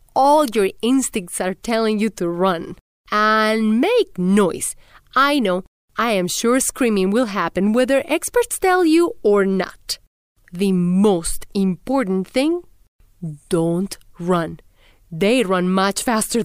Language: English